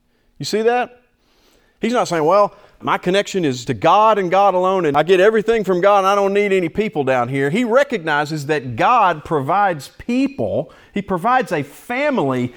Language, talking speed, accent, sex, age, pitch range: English, 185 wpm, American, male, 40-59, 135-195 Hz